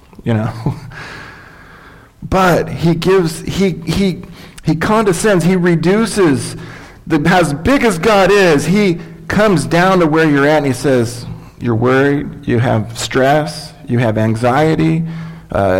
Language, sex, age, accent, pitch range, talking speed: English, male, 40-59, American, 115-155 Hz, 135 wpm